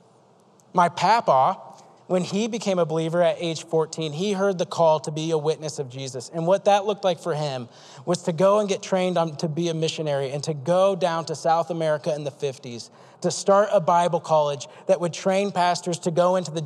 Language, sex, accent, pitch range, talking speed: English, male, American, 165-205 Hz, 215 wpm